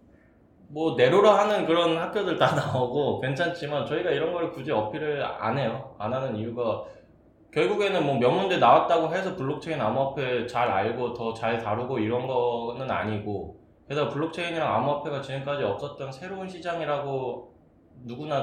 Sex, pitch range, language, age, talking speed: male, 110-150 Hz, English, 20-39, 130 wpm